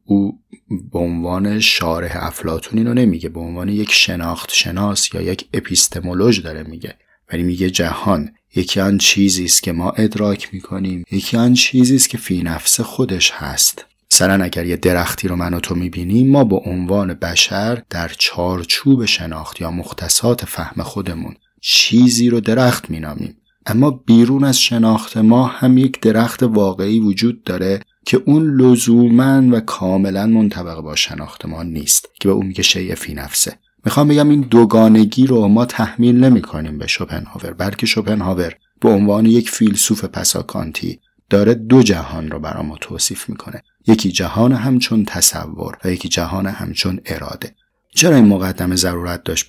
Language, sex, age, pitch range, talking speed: Persian, male, 30-49, 90-115 Hz, 145 wpm